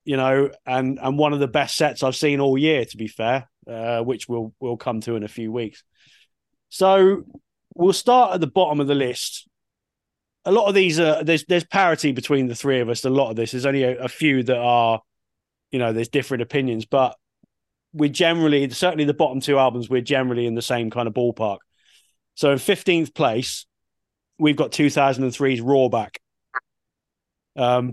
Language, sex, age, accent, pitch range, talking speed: English, male, 30-49, British, 125-150 Hz, 195 wpm